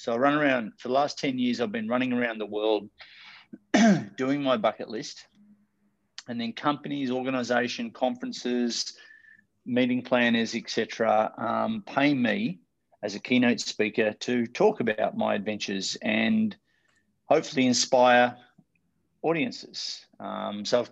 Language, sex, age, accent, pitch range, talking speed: English, male, 30-49, Australian, 110-140 Hz, 135 wpm